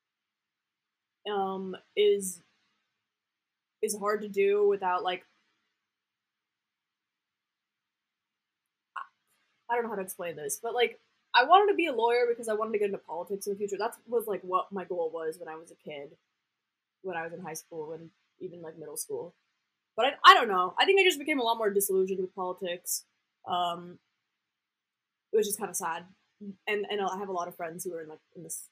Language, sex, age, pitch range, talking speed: English, female, 20-39, 185-235 Hz, 195 wpm